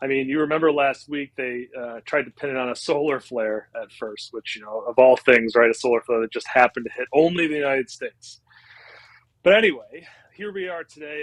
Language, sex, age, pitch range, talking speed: English, male, 30-49, 125-155 Hz, 230 wpm